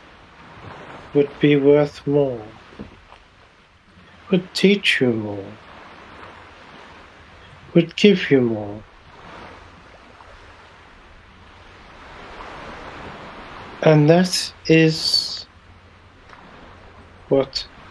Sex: male